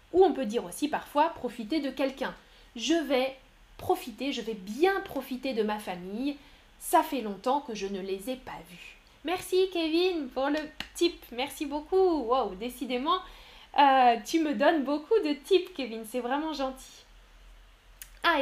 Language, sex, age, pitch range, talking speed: French, female, 10-29, 245-320 Hz, 165 wpm